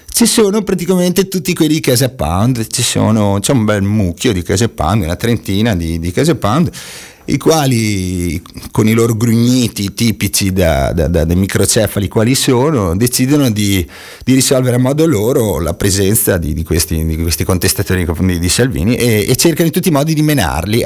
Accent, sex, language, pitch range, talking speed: native, male, Italian, 90-120 Hz, 185 wpm